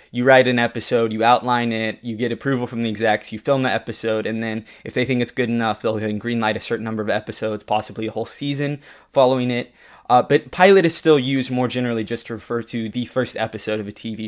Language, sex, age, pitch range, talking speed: English, male, 20-39, 110-135 Hz, 245 wpm